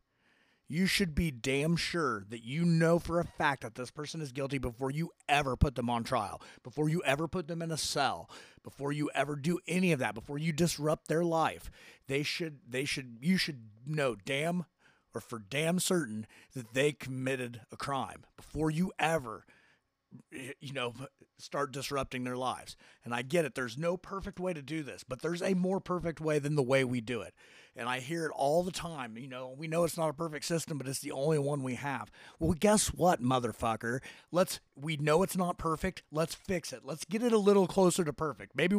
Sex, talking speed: male, 215 wpm